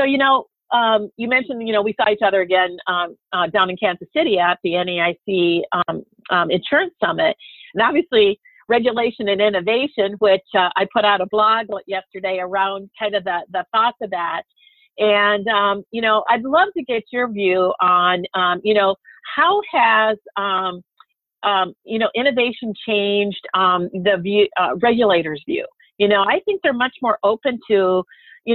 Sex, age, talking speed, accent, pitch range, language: female, 50-69, 175 wpm, American, 185-235 Hz, English